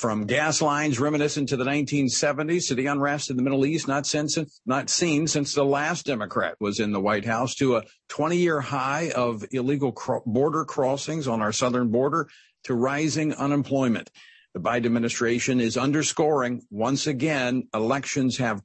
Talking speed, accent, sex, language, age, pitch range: 165 wpm, American, male, English, 50-69, 120-150 Hz